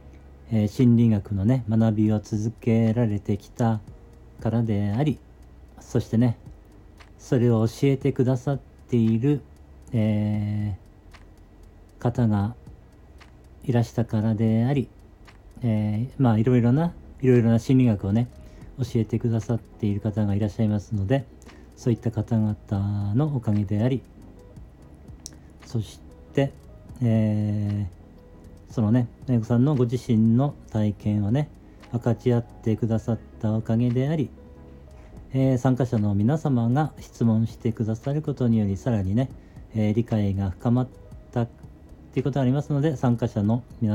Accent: native